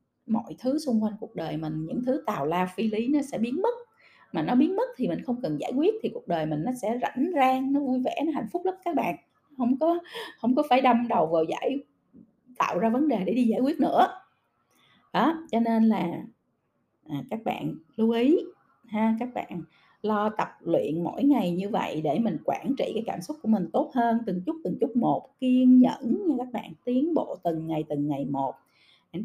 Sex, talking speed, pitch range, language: female, 225 wpm, 215-275 Hz, Vietnamese